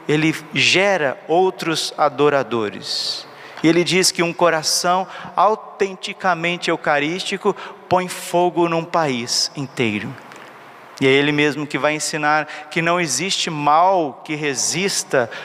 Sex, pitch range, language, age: male, 150-185 Hz, Portuguese, 50-69